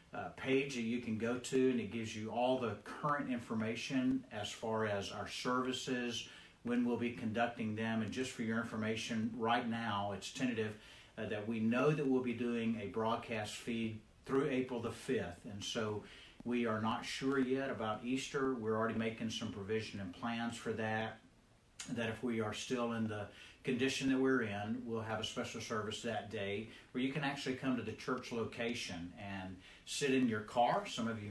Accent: American